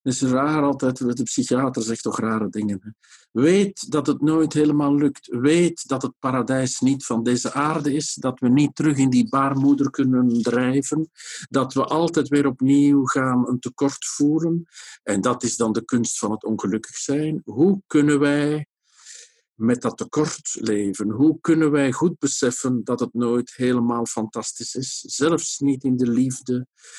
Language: Dutch